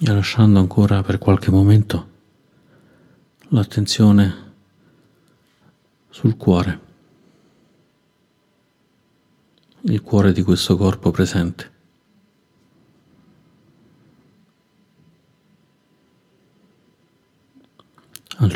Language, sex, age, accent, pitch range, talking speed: Italian, male, 50-69, native, 90-105 Hz, 50 wpm